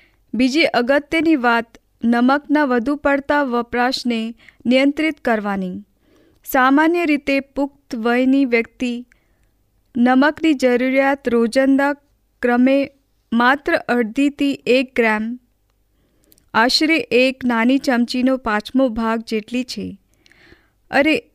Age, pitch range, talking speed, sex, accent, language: 20-39, 240-280 Hz, 80 wpm, female, native, Hindi